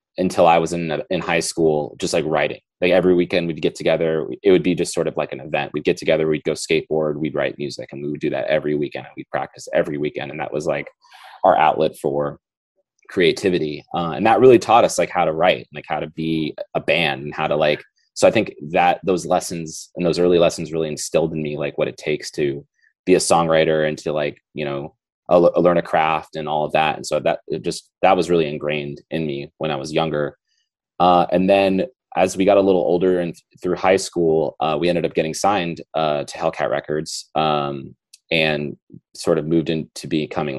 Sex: male